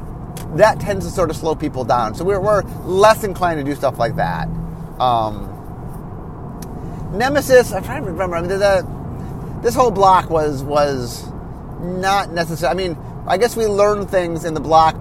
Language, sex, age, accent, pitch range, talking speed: English, male, 30-49, American, 145-195 Hz, 180 wpm